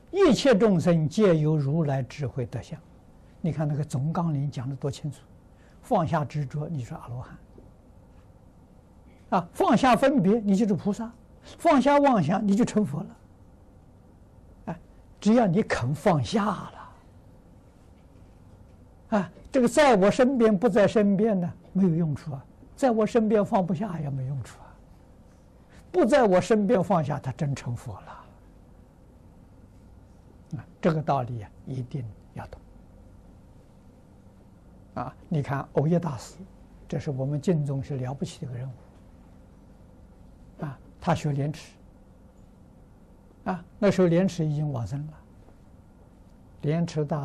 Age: 60-79